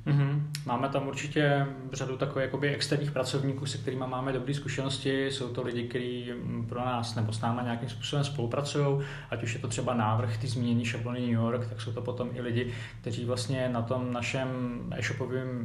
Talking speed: 185 wpm